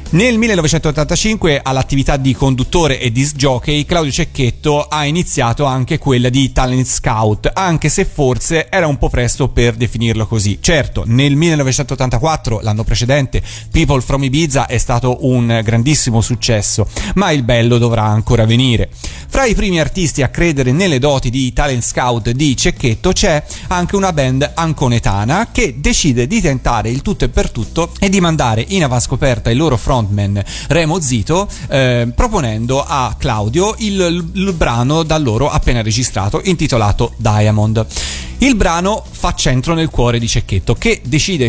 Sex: male